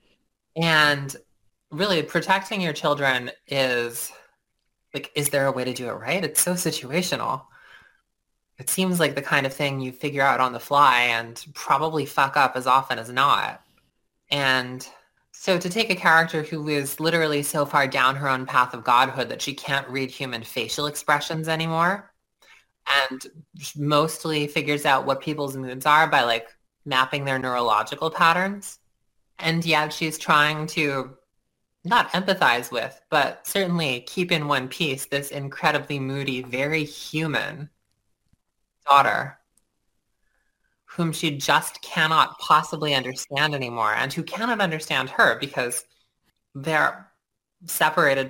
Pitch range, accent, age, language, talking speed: 130-160 Hz, American, 20-39, English, 140 wpm